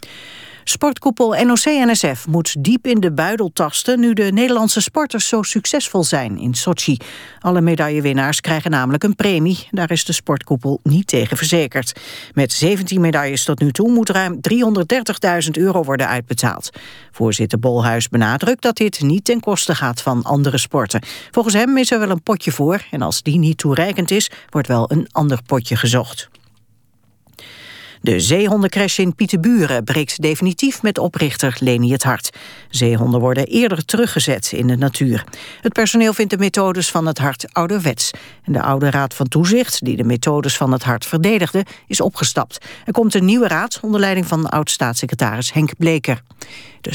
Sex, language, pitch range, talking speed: female, Dutch, 130-195 Hz, 160 wpm